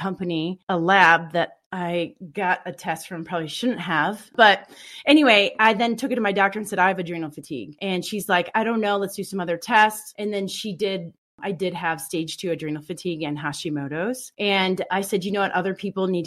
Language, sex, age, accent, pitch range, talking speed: English, female, 30-49, American, 175-225 Hz, 220 wpm